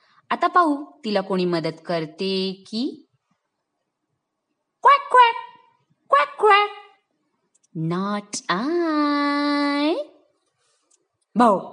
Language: Marathi